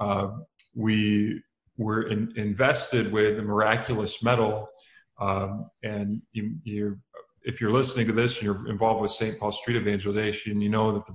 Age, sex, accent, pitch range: 40-59, male, American, 105-115 Hz